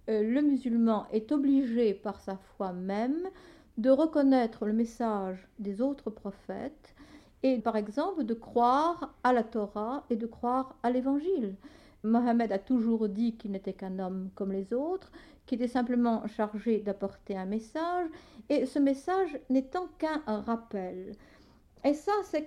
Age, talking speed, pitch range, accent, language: 50-69, 145 wpm, 210-280 Hz, French, French